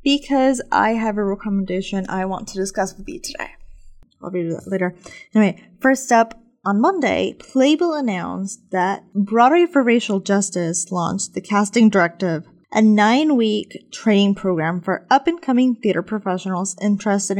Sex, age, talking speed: female, 10-29, 145 wpm